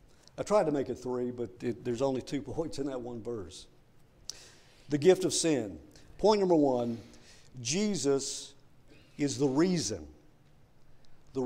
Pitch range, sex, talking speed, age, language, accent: 125-150 Hz, male, 140 wpm, 50-69, English, American